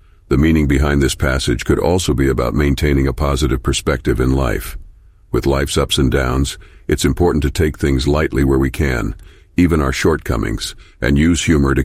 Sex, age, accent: male, 50-69, American